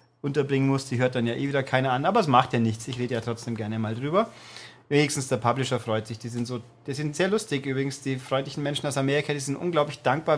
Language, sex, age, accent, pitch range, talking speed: German, male, 40-59, German, 130-155 Hz, 255 wpm